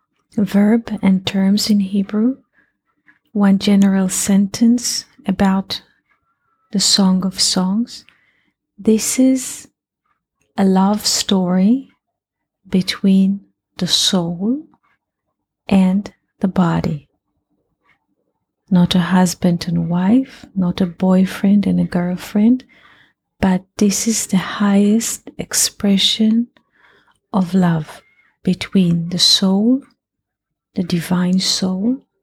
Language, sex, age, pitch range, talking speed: English, female, 30-49, 185-220 Hz, 90 wpm